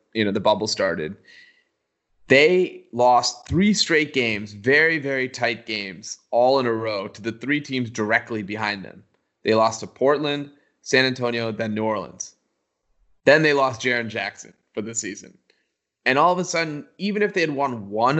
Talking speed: 175 wpm